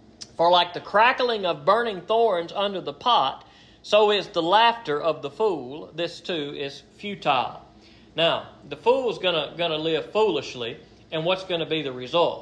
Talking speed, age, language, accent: 175 wpm, 40-59, English, American